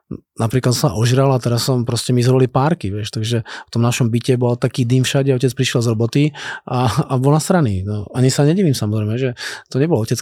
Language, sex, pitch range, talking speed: Czech, male, 125-165 Hz, 235 wpm